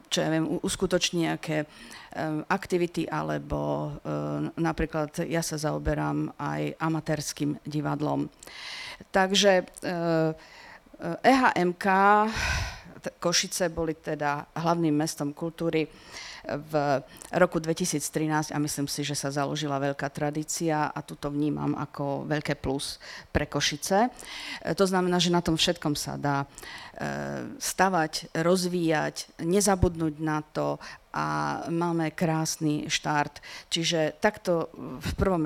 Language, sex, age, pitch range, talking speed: Slovak, female, 50-69, 150-175 Hz, 105 wpm